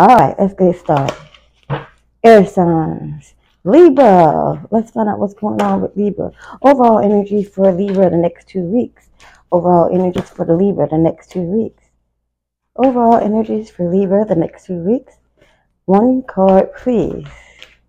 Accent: American